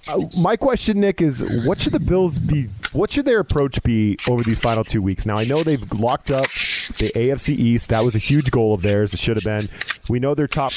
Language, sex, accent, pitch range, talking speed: English, male, American, 110-140 Hz, 245 wpm